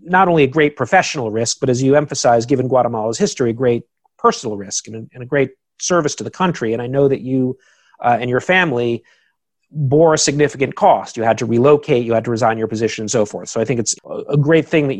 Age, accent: 40-59, American